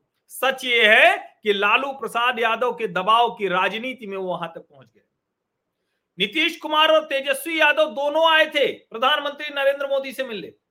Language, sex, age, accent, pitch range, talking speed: Hindi, male, 40-59, native, 220-275 Hz, 165 wpm